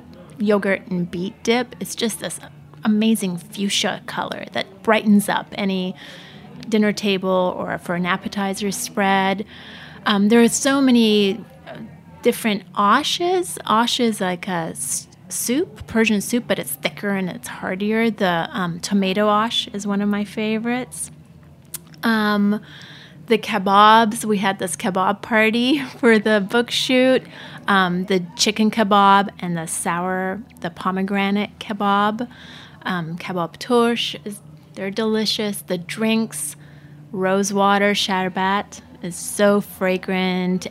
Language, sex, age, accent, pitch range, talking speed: English, female, 30-49, American, 185-225 Hz, 125 wpm